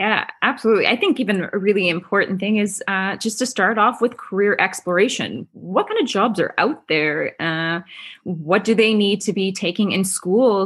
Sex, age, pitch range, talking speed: female, 20-39, 175-215 Hz, 195 wpm